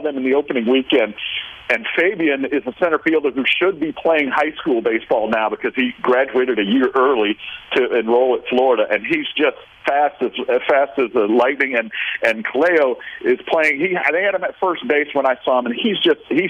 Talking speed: 210 wpm